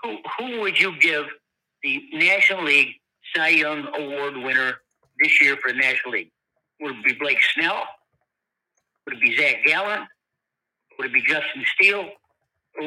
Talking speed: 160 wpm